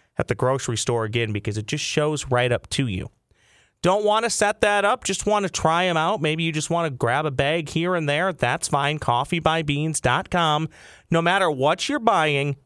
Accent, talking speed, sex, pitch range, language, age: American, 210 wpm, male, 120-170 Hz, English, 30-49